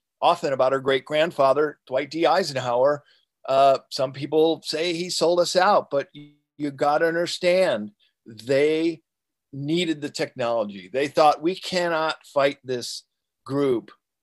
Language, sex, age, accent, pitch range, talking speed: English, male, 50-69, American, 130-160 Hz, 135 wpm